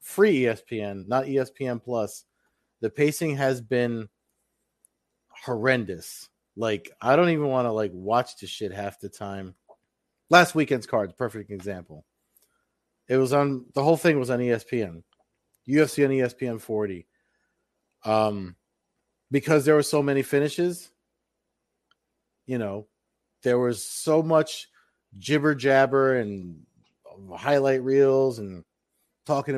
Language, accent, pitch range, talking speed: English, American, 105-140 Hz, 125 wpm